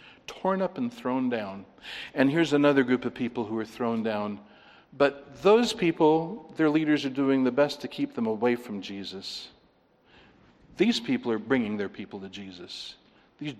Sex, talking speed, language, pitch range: male, 170 wpm, English, 115-165 Hz